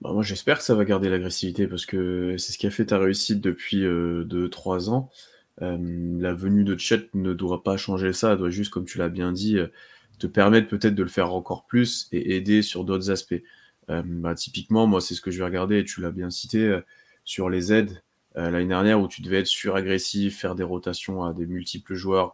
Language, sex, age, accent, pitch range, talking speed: French, male, 20-39, French, 90-105 Hz, 235 wpm